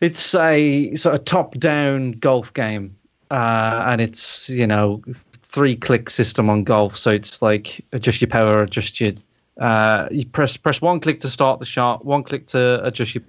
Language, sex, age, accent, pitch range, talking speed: English, male, 20-39, British, 120-145 Hz, 180 wpm